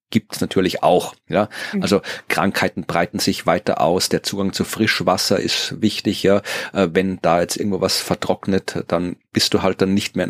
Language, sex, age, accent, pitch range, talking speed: German, male, 30-49, German, 95-105 Hz, 185 wpm